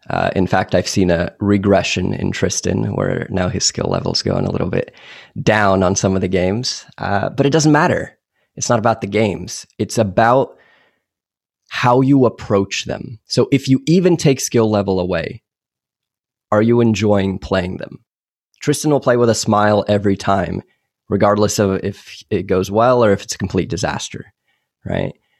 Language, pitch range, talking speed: English, 95-120 Hz, 175 wpm